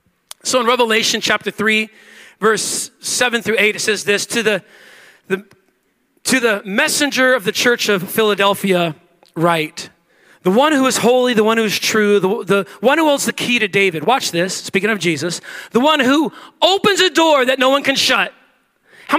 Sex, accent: male, American